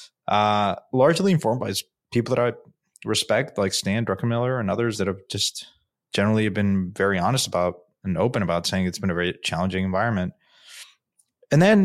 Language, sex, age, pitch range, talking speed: English, male, 20-39, 105-130 Hz, 165 wpm